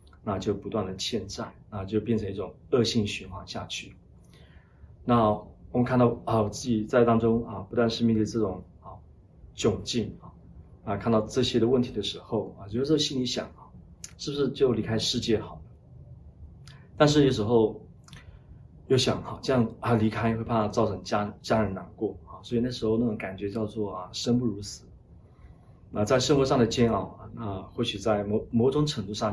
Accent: native